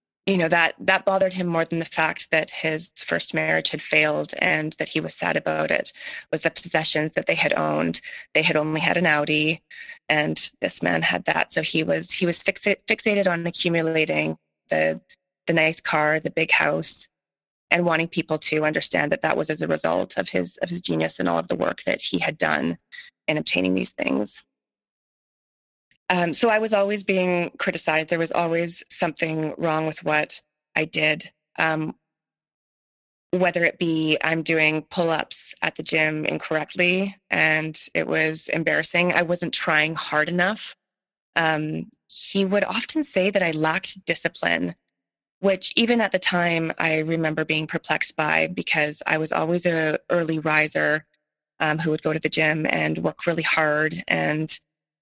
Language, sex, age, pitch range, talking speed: English, female, 20-39, 155-175 Hz, 175 wpm